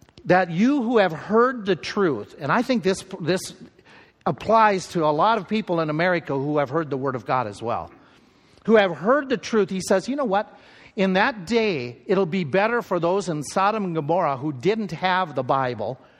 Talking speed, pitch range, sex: 210 wpm, 170-235 Hz, male